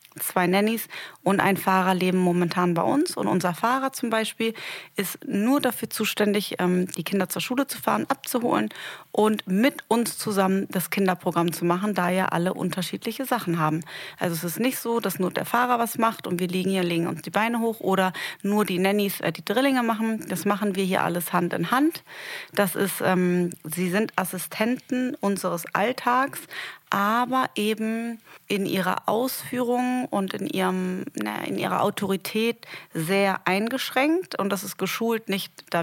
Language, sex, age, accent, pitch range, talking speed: German, female, 30-49, German, 185-225 Hz, 170 wpm